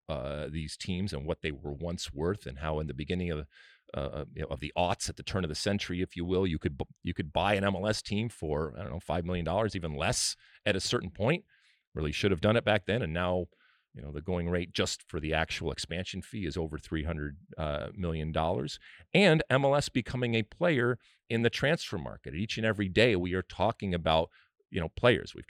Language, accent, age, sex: English, American, 40-59, male